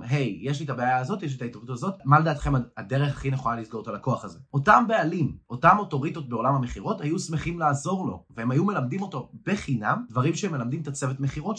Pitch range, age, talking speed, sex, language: 120-155 Hz, 20-39, 210 wpm, male, Hebrew